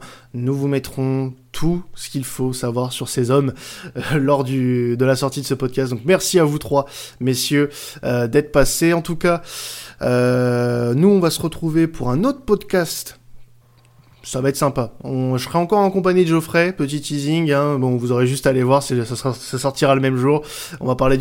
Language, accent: French, French